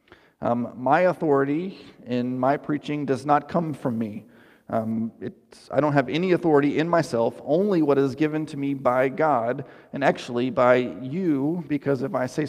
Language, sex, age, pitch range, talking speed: English, male, 30-49, 125-155 Hz, 170 wpm